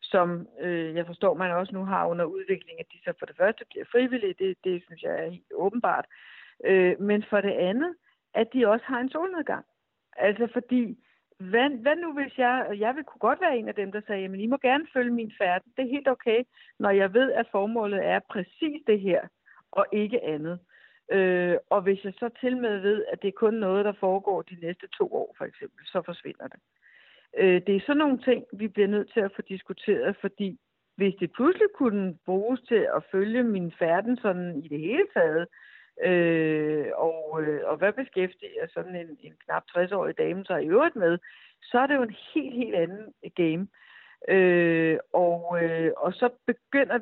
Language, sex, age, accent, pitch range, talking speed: Danish, female, 60-79, native, 180-250 Hz, 200 wpm